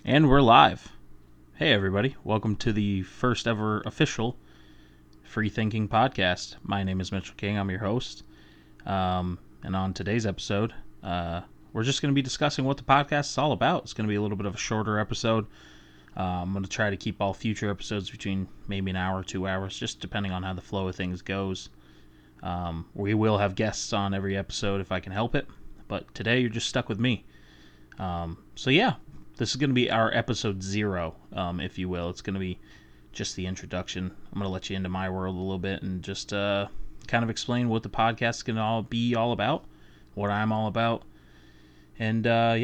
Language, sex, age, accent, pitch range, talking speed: English, male, 20-39, American, 95-115 Hz, 215 wpm